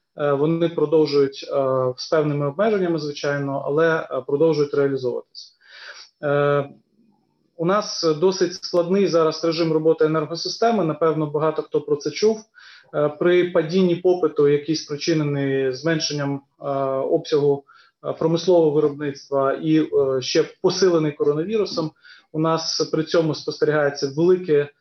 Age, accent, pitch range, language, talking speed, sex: 30-49, native, 145-170 Hz, Ukrainian, 100 wpm, male